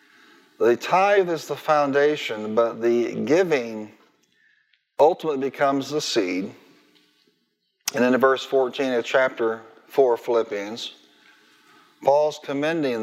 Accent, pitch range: American, 120-150 Hz